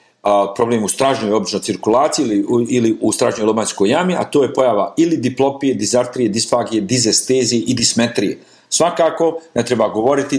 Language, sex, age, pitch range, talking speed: Croatian, male, 40-59, 120-160 Hz, 145 wpm